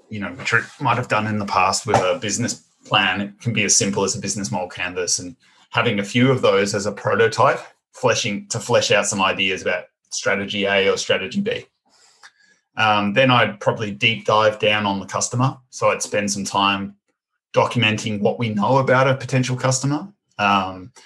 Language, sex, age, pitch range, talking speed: English, male, 20-39, 100-135 Hz, 195 wpm